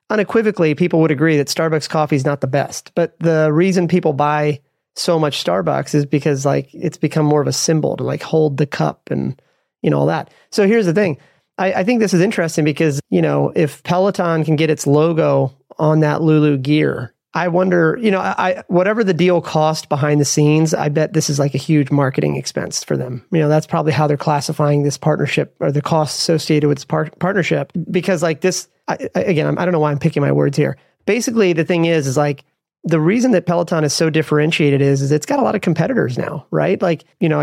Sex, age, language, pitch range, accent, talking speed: male, 30-49, English, 150-175 Hz, American, 230 wpm